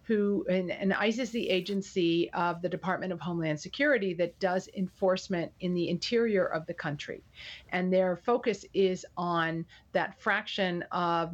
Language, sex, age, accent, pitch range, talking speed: English, female, 40-59, American, 175-205 Hz, 155 wpm